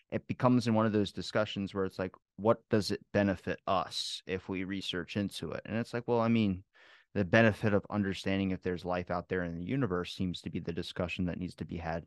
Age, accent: 30-49, American